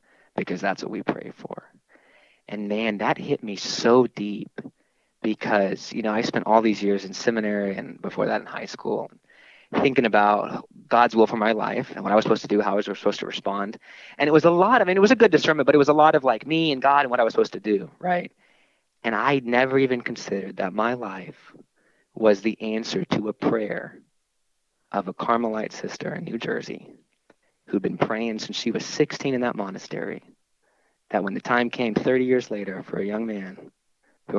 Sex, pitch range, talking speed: male, 105-125 Hz, 215 wpm